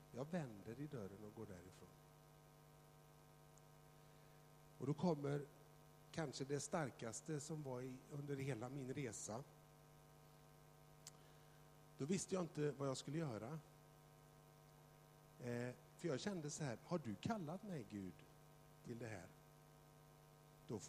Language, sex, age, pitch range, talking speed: Swedish, male, 60-79, 145-155 Hz, 120 wpm